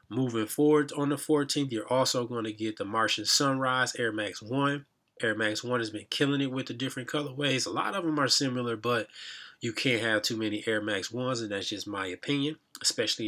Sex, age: male, 20-39